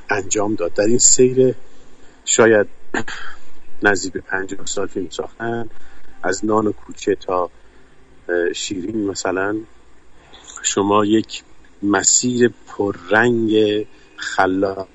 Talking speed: 90 wpm